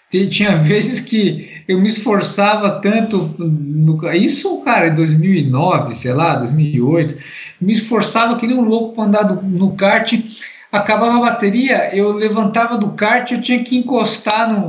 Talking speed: 150 wpm